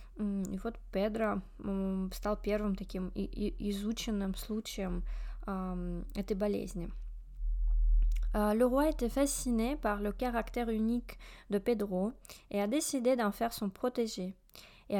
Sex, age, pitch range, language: female, 20-39, 190-235 Hz, Russian